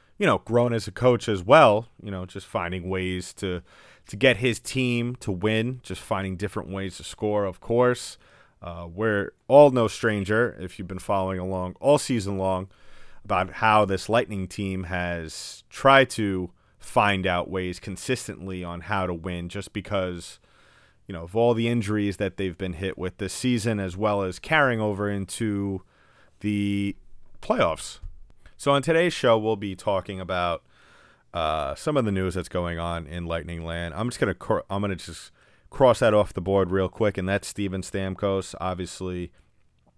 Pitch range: 90-110 Hz